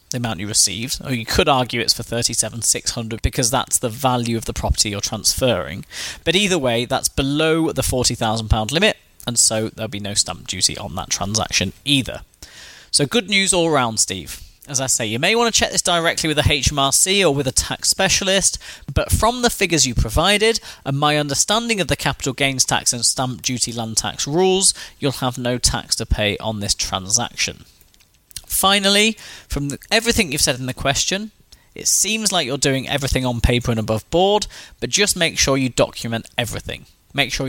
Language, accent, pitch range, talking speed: English, British, 110-160 Hz, 190 wpm